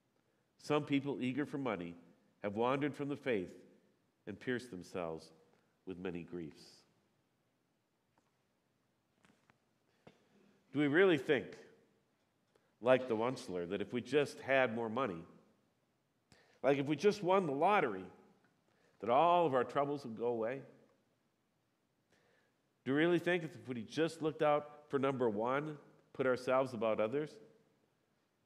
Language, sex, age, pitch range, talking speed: English, male, 50-69, 110-145 Hz, 130 wpm